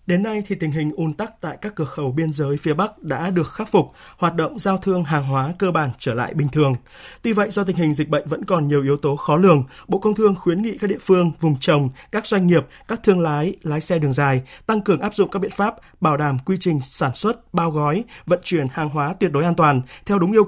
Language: Vietnamese